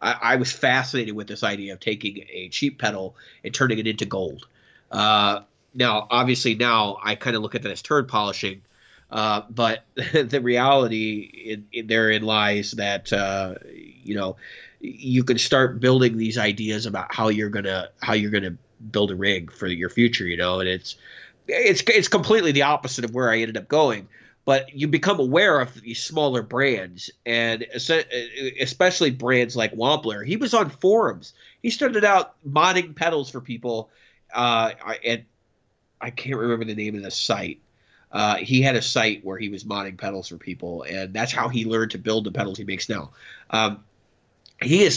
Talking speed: 180 wpm